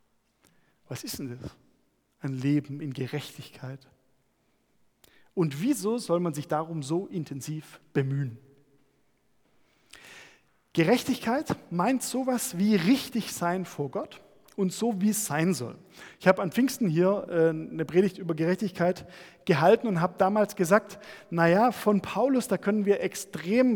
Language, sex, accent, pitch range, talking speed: German, male, German, 150-210 Hz, 130 wpm